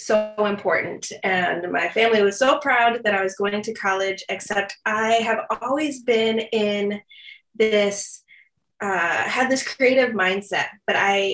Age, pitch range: 20-39, 200-245 Hz